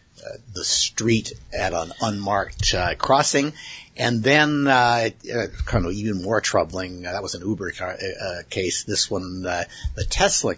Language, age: English, 60-79